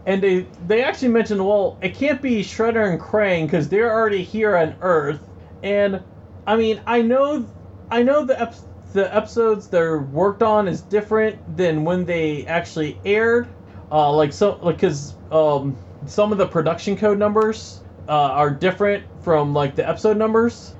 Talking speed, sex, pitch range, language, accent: 170 wpm, male, 160-220 Hz, English, American